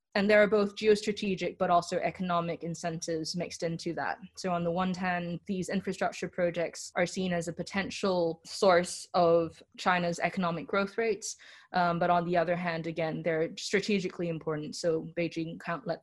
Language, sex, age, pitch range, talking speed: English, female, 20-39, 170-190 Hz, 170 wpm